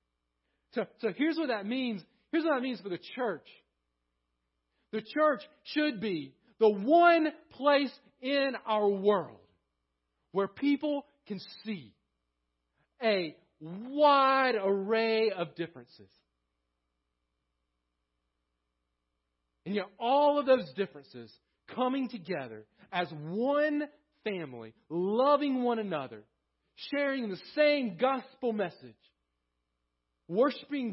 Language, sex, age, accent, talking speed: English, male, 40-59, American, 100 wpm